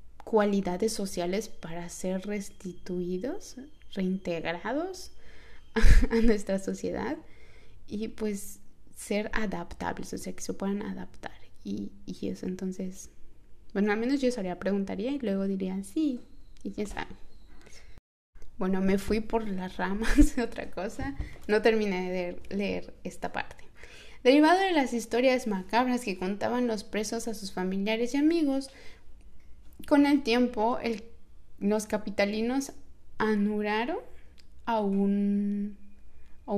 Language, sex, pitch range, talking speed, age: Spanish, female, 190-245 Hz, 125 wpm, 20-39